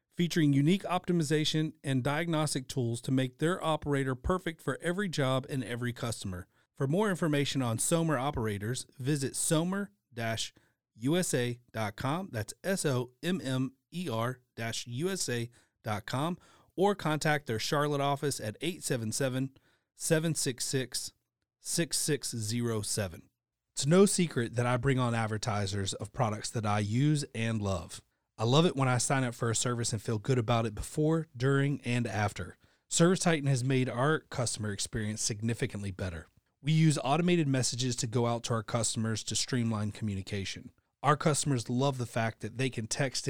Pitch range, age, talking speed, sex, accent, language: 115-150 Hz, 30-49, 135 wpm, male, American, English